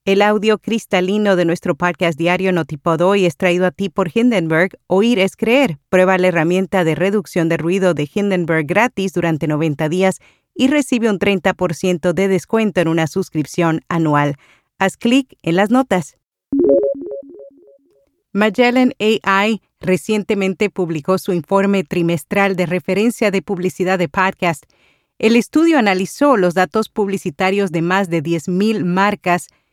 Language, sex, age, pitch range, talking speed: Spanish, female, 40-59, 175-210 Hz, 140 wpm